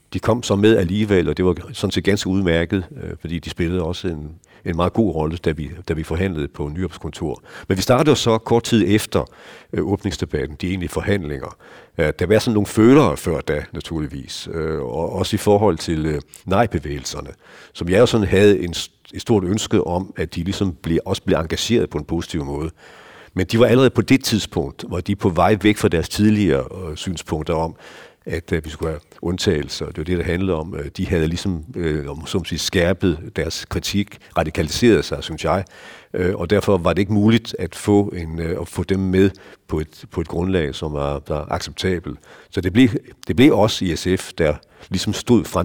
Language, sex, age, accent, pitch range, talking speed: Danish, male, 60-79, native, 80-100 Hz, 195 wpm